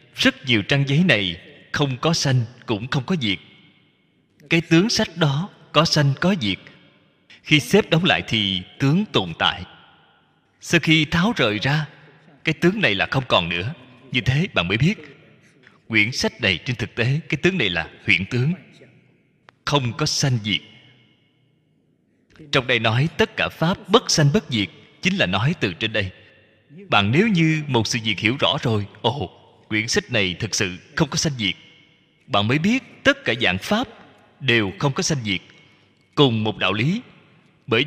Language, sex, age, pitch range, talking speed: Vietnamese, male, 20-39, 115-165 Hz, 180 wpm